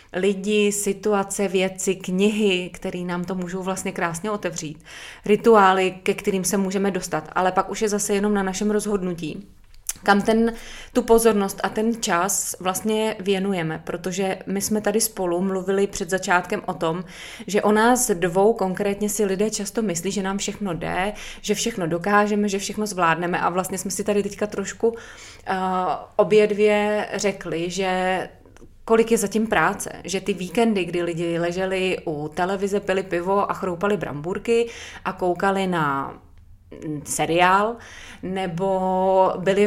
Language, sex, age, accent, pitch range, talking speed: Czech, female, 20-39, native, 180-210 Hz, 150 wpm